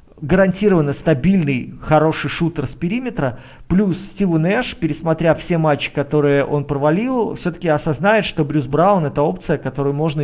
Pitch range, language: 150-185 Hz, Russian